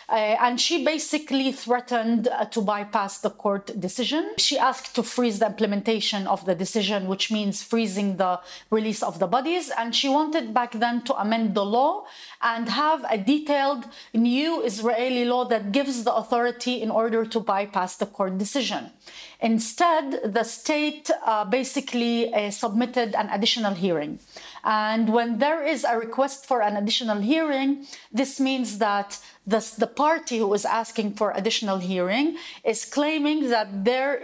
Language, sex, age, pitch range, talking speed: English, female, 30-49, 215-265 Hz, 160 wpm